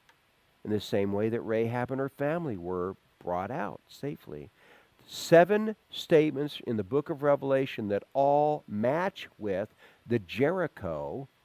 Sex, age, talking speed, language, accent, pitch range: male, 50-69, 135 wpm, English, American, 130-185 Hz